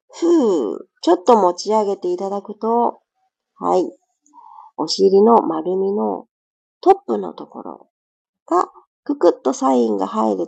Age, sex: 40-59, female